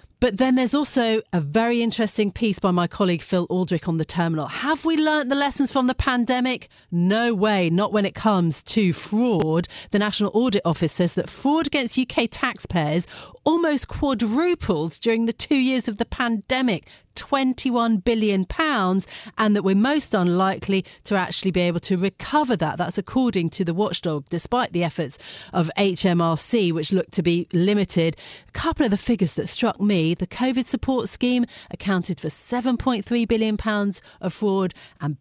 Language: English